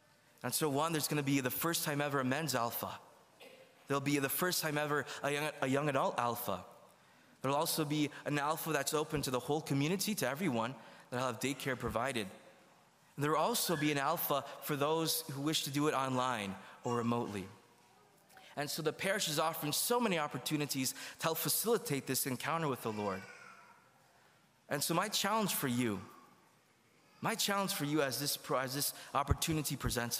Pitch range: 125-165 Hz